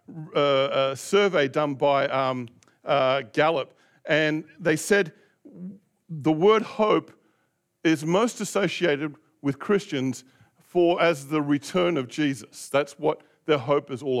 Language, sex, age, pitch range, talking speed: English, male, 50-69, 145-190 Hz, 130 wpm